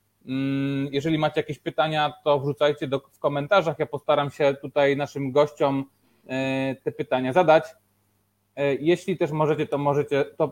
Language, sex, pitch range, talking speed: Polish, male, 135-155 Hz, 125 wpm